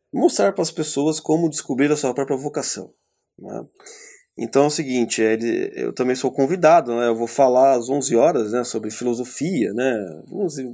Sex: male